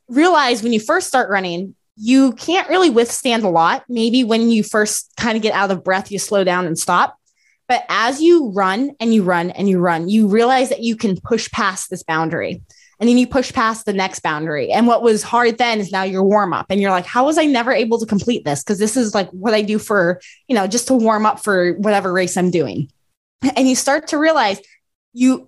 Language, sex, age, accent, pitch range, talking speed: English, female, 20-39, American, 200-260 Hz, 235 wpm